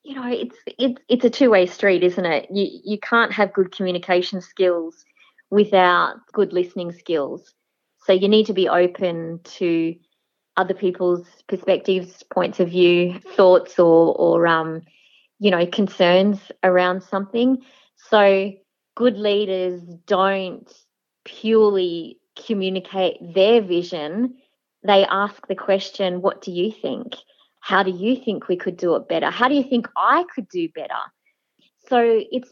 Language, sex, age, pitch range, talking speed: English, female, 20-39, 185-245 Hz, 145 wpm